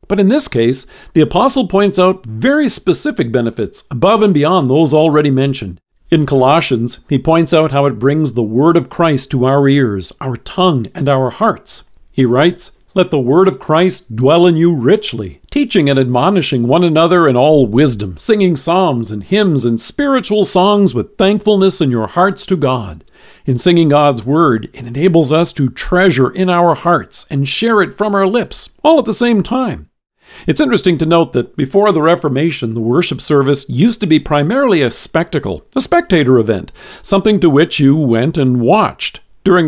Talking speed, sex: 185 wpm, male